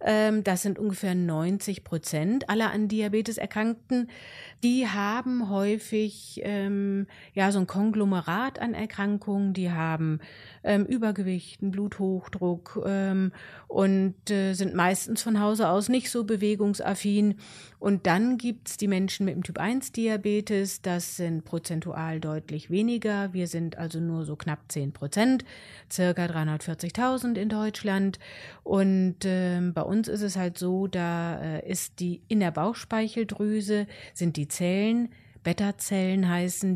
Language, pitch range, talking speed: German, 175-210 Hz, 135 wpm